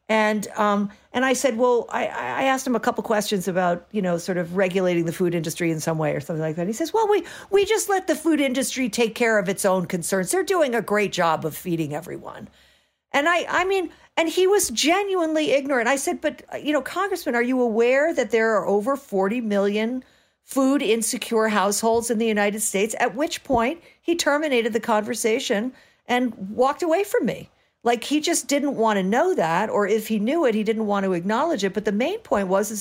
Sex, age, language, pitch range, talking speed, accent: female, 50-69, English, 195-280 Hz, 220 wpm, American